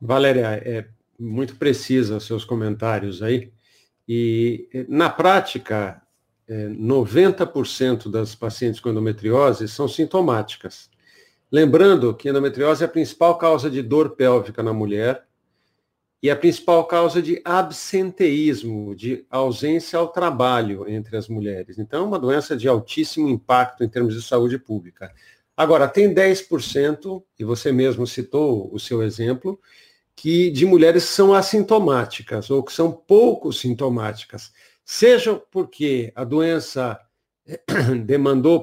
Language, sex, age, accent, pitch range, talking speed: Portuguese, male, 50-69, Brazilian, 120-170 Hz, 125 wpm